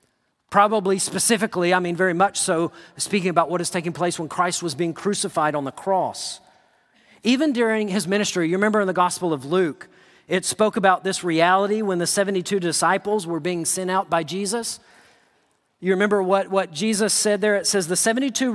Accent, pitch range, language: American, 165-210 Hz, English